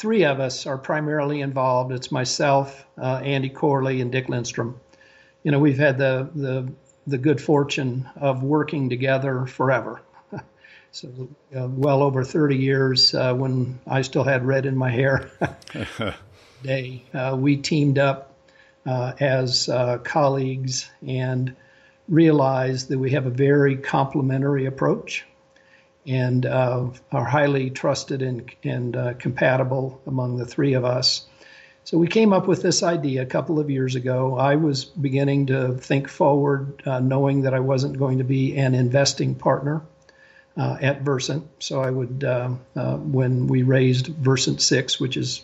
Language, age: English, 60-79